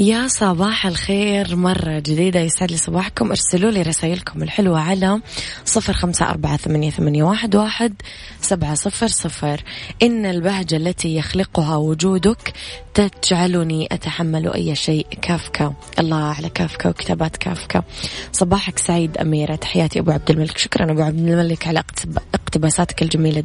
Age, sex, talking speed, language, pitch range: 20-39, female, 130 wpm, Arabic, 155-190 Hz